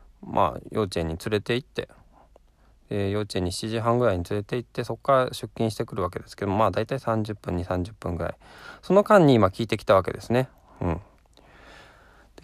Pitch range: 95-130 Hz